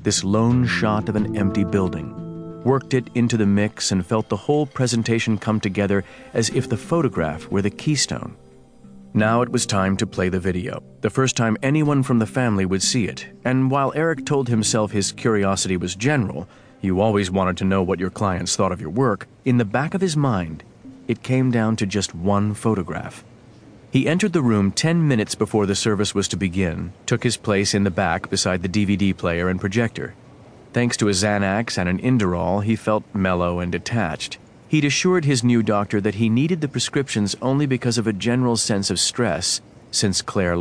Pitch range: 95-125 Hz